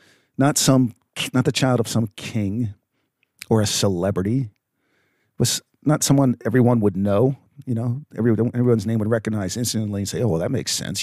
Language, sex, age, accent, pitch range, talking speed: English, male, 50-69, American, 100-130 Hz, 180 wpm